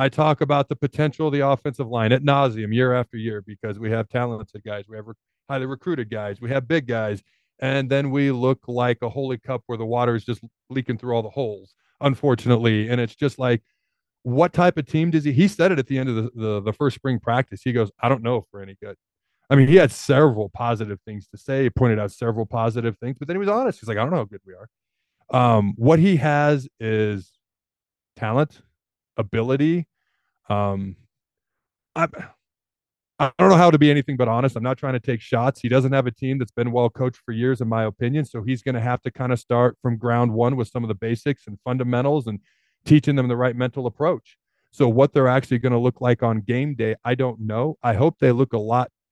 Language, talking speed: English, 235 wpm